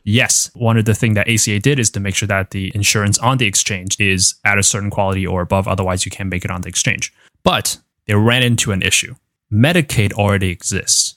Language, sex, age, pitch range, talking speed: English, male, 20-39, 100-120 Hz, 225 wpm